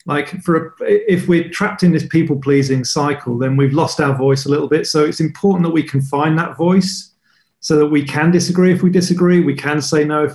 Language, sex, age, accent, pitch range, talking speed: English, male, 40-59, British, 135-160 Hz, 240 wpm